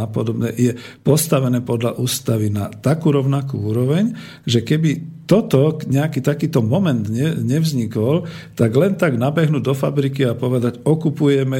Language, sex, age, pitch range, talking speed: Slovak, male, 50-69, 110-145 Hz, 125 wpm